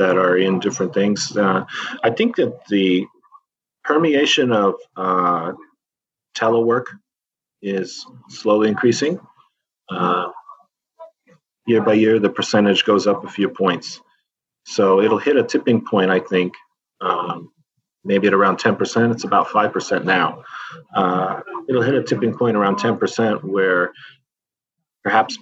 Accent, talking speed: American, 130 wpm